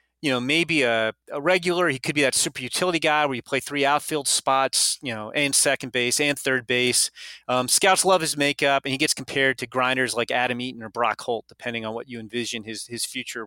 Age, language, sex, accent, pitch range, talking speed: 30-49, English, male, American, 130-175 Hz, 230 wpm